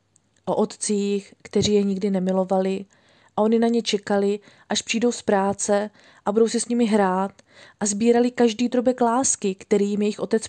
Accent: native